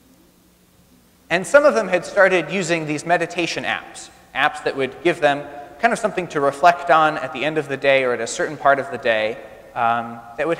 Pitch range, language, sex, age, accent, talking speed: 130-185 Hz, English, male, 30-49, American, 215 wpm